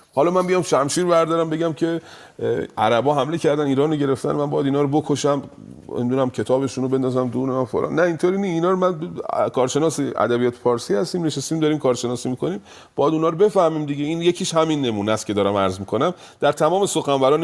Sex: male